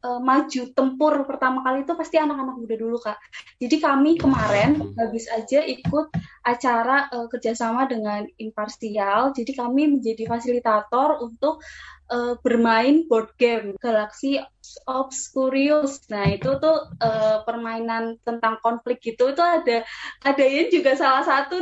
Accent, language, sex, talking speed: native, Indonesian, female, 135 wpm